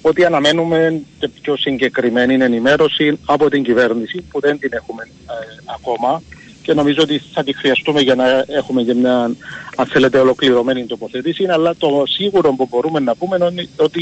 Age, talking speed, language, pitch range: 50-69, 165 wpm, Greek, 130-175 Hz